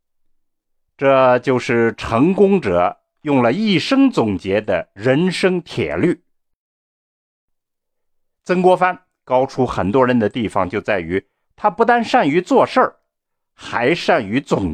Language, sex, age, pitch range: Chinese, male, 50-69, 120-200 Hz